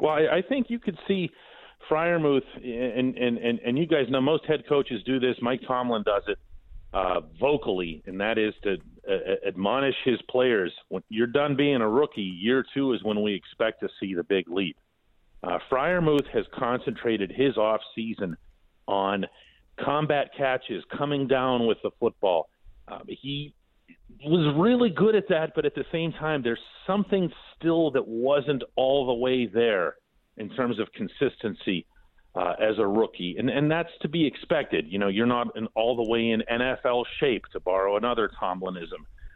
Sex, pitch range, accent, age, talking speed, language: male, 115-155 Hz, American, 40-59, 175 wpm, English